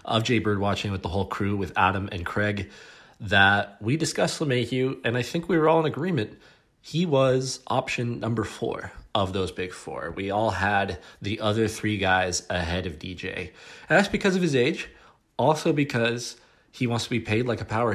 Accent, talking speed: American, 195 wpm